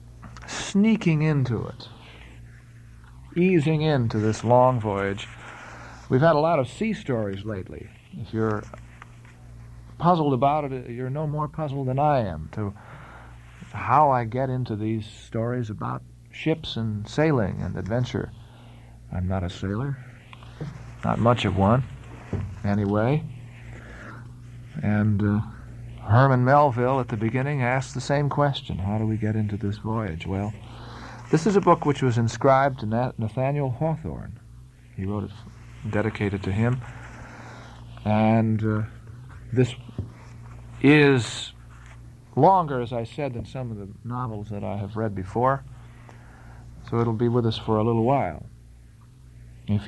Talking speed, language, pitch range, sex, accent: 135 wpm, English, 105-130 Hz, male, American